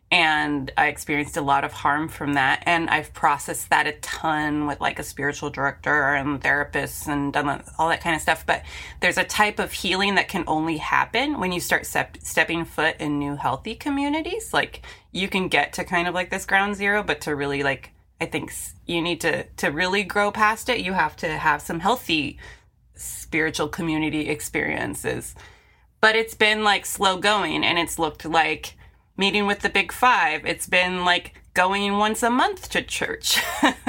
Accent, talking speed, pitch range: American, 190 wpm, 150-205 Hz